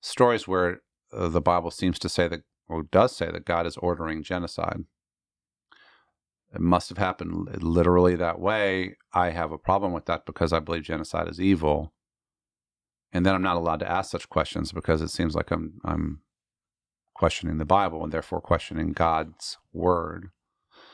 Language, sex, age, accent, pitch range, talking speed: English, male, 40-59, American, 85-100 Hz, 165 wpm